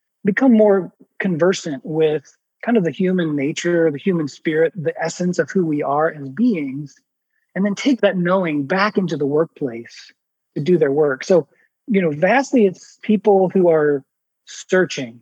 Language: English